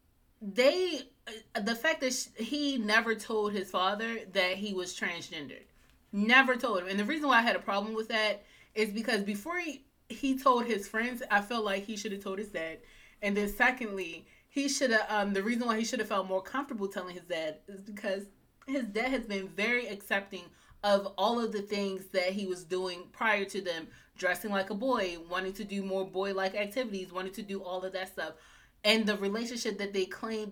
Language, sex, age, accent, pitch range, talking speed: English, female, 20-39, American, 185-220 Hz, 205 wpm